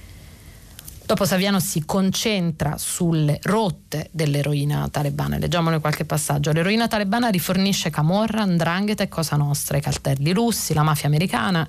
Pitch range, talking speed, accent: 145-185 Hz, 135 wpm, native